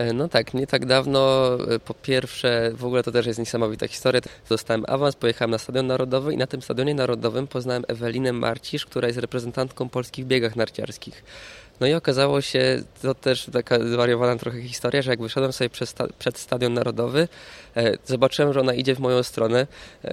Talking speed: 175 wpm